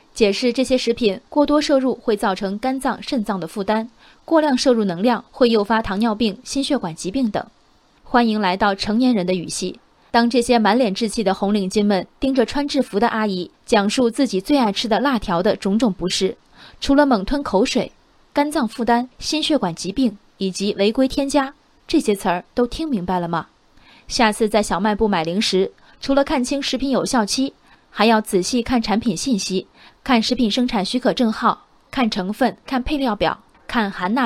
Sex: female